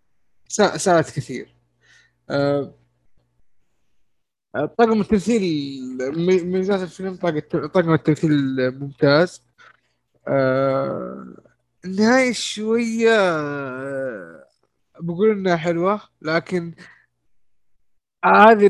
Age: 20-39